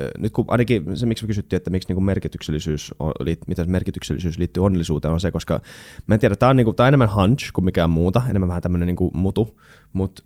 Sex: male